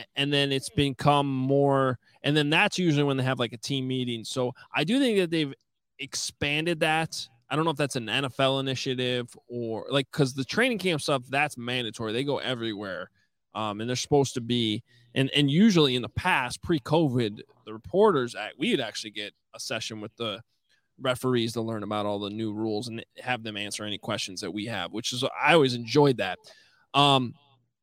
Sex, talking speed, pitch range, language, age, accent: male, 205 wpm, 115-140 Hz, English, 20-39, American